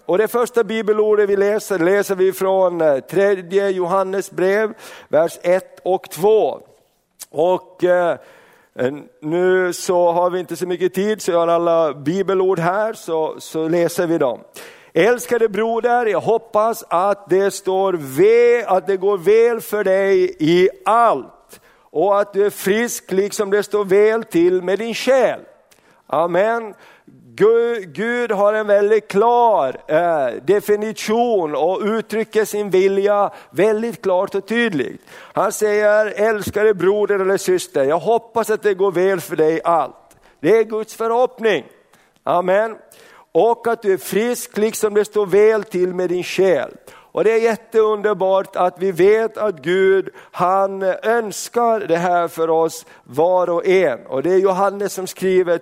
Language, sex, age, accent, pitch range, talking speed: Swedish, male, 50-69, native, 185-225 Hz, 150 wpm